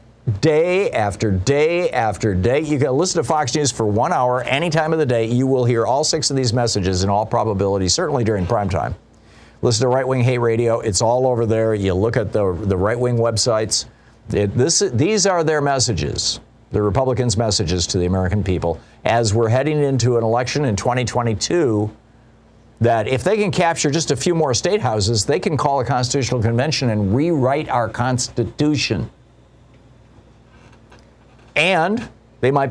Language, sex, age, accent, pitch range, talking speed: English, male, 50-69, American, 110-140 Hz, 170 wpm